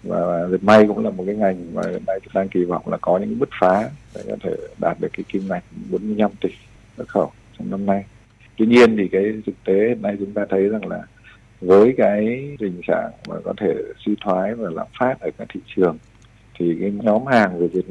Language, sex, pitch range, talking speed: Vietnamese, male, 90-110 Hz, 230 wpm